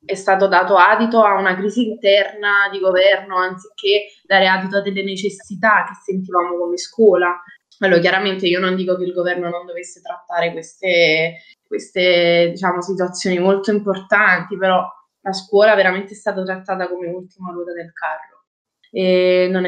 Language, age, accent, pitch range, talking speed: Italian, 20-39, native, 180-195 Hz, 155 wpm